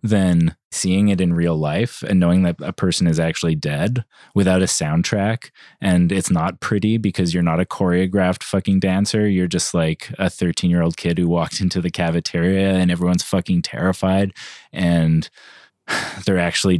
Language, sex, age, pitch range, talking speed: English, male, 20-39, 85-95 Hz, 170 wpm